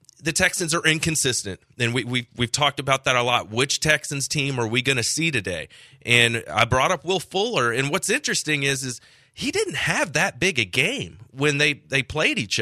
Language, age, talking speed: English, 30-49, 215 wpm